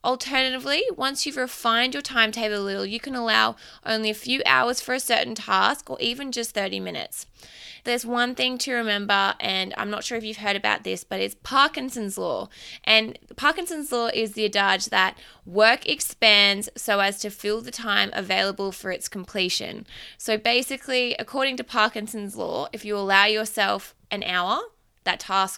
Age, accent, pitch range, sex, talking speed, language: 20-39, Australian, 200-250 Hz, female, 175 wpm, English